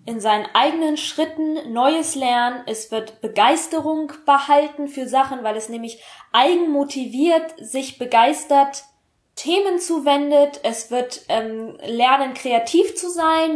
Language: German